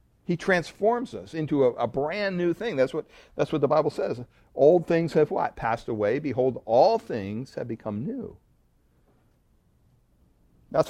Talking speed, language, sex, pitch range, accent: 155 wpm, English, male, 110-145 Hz, American